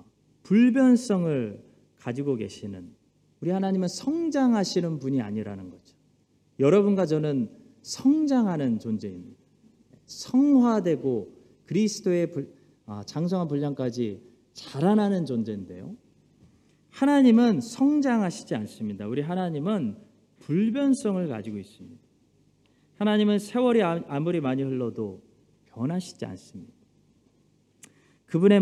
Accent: native